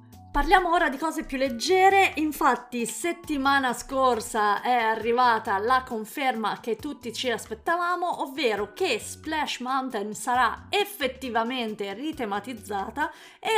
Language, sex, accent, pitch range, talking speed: Italian, female, native, 215-300 Hz, 110 wpm